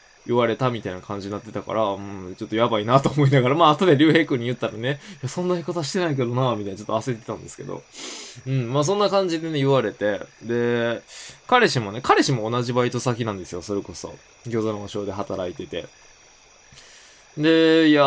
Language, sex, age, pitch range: Japanese, male, 20-39, 110-140 Hz